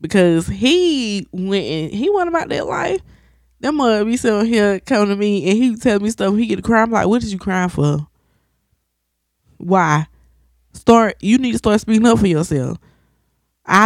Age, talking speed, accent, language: 20-39, 180 wpm, American, English